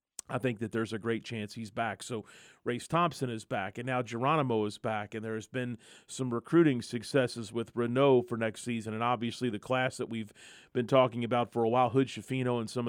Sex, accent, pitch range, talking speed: male, American, 115-130 Hz, 215 wpm